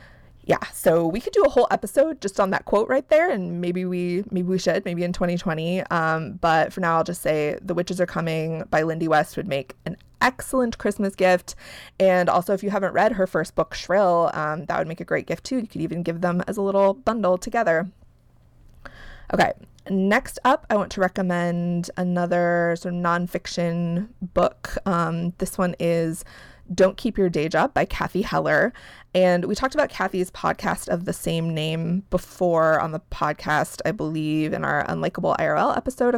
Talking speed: 190 wpm